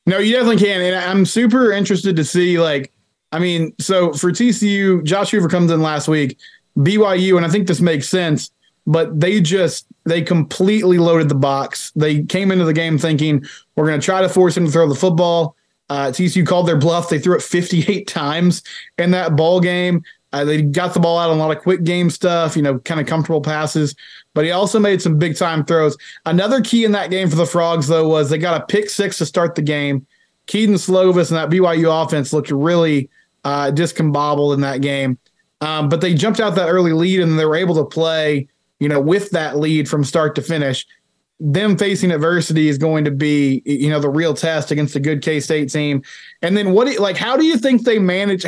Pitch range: 150-185 Hz